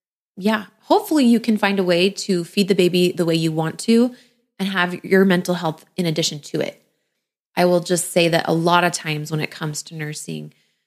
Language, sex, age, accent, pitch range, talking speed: English, female, 20-39, American, 175-240 Hz, 215 wpm